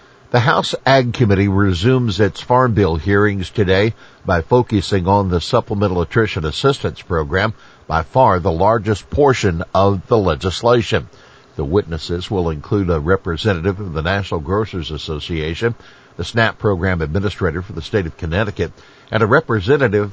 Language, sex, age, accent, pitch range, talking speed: English, male, 60-79, American, 95-120 Hz, 145 wpm